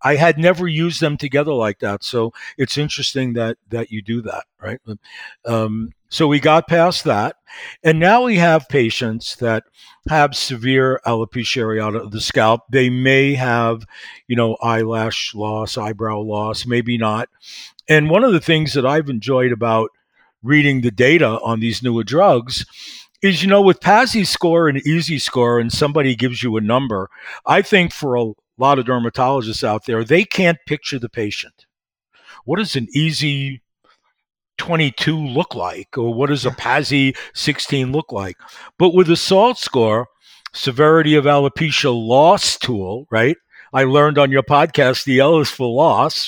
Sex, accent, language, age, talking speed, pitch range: male, American, English, 50-69, 165 wpm, 115-160 Hz